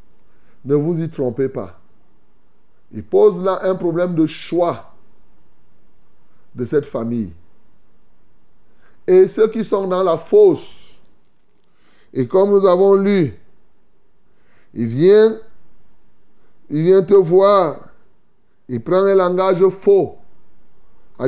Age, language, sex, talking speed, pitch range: 30-49, French, male, 110 wpm, 140-190 Hz